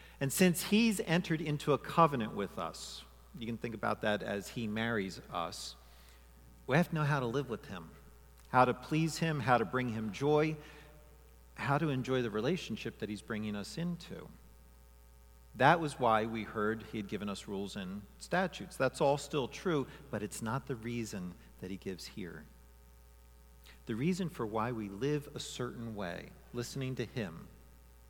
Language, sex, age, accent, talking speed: English, male, 50-69, American, 175 wpm